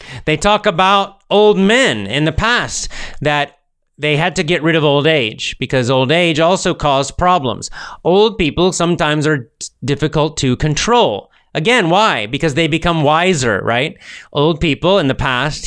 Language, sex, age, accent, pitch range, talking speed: English, male, 30-49, American, 130-165 Hz, 160 wpm